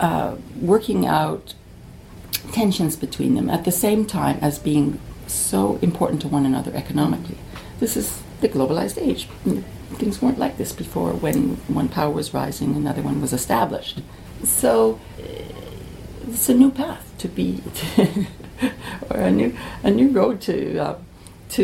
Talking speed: 145 wpm